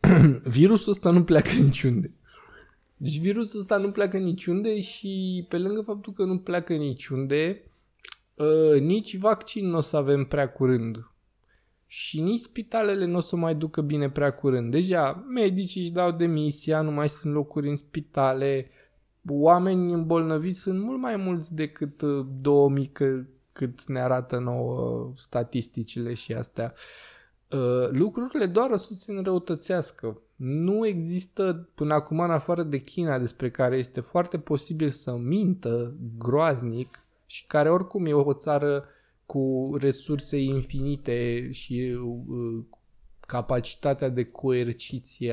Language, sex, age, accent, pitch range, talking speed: English, male, 20-39, Romanian, 130-180 Hz, 130 wpm